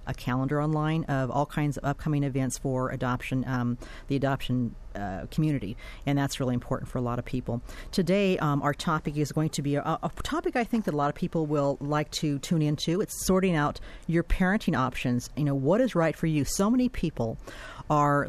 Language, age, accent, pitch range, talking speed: English, 40-59, American, 140-165 Hz, 210 wpm